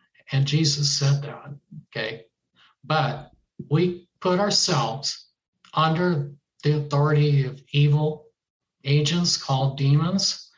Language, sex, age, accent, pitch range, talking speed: English, male, 60-79, American, 135-155 Hz, 95 wpm